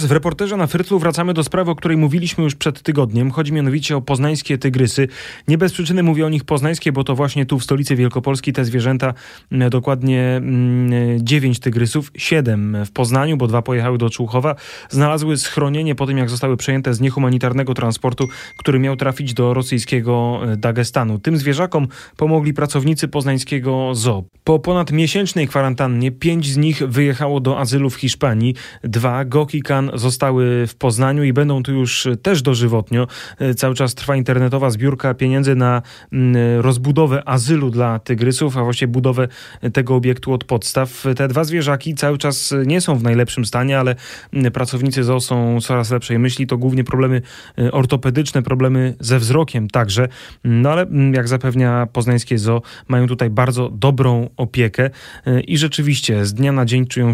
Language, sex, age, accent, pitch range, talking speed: Polish, male, 30-49, native, 125-145 Hz, 160 wpm